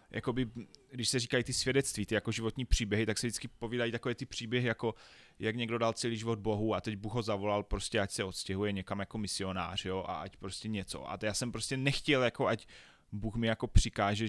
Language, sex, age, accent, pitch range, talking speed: Czech, male, 30-49, native, 100-125 Hz, 215 wpm